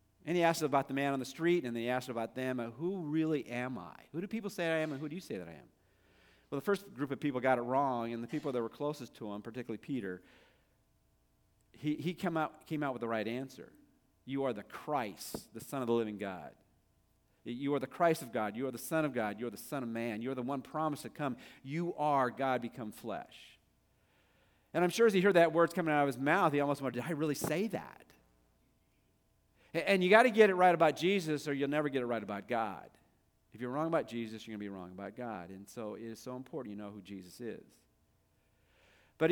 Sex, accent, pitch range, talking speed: male, American, 115-160 Hz, 250 wpm